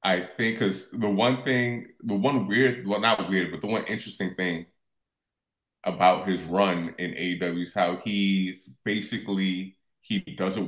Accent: American